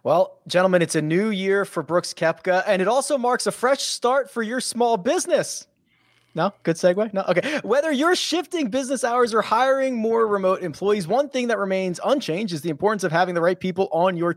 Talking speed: 210 wpm